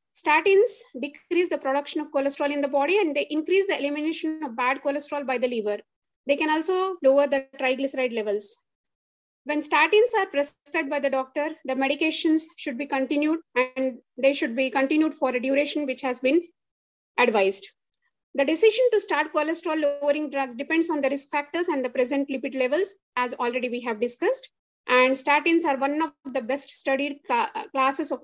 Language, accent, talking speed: English, Indian, 175 wpm